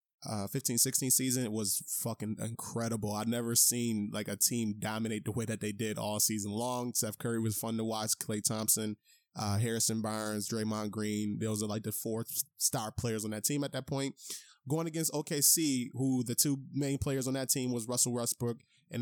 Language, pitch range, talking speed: English, 110-135 Hz, 200 wpm